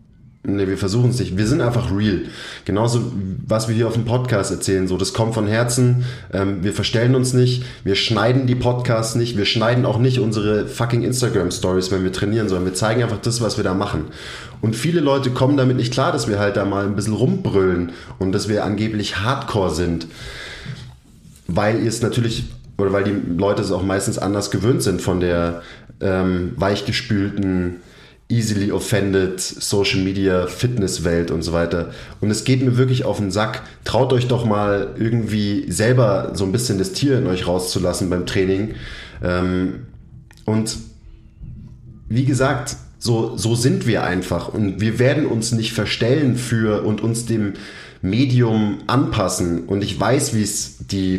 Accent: German